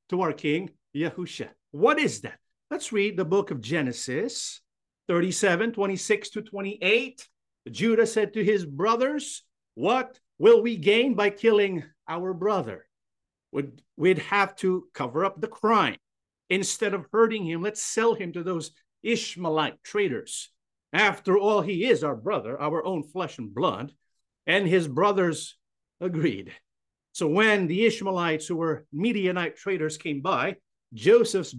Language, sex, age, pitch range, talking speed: English, male, 50-69, 165-225 Hz, 140 wpm